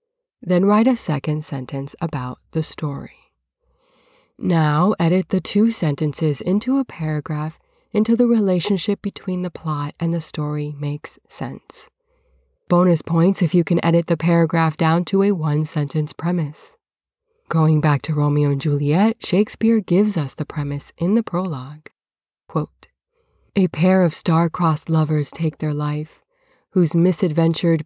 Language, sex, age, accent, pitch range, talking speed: English, female, 20-39, American, 150-190 Hz, 140 wpm